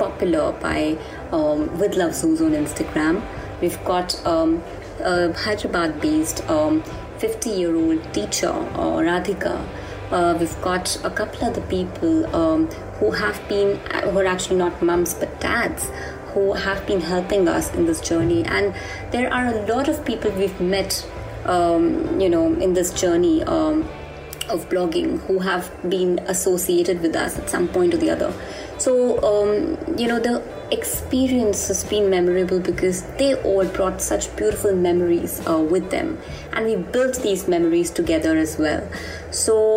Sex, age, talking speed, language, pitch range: female, 20-39, 160 wpm, English, 175-260 Hz